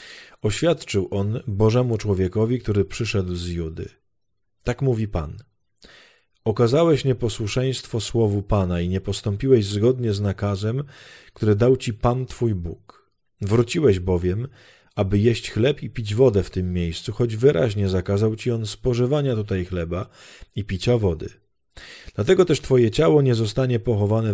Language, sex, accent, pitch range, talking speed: Polish, male, native, 95-120 Hz, 140 wpm